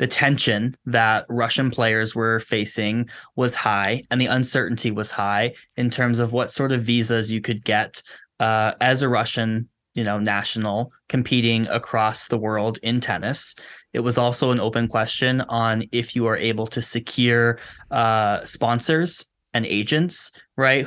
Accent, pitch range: American, 110-125 Hz